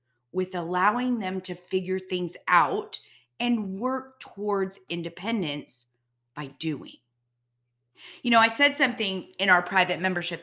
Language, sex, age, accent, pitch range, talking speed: English, female, 30-49, American, 155-230 Hz, 125 wpm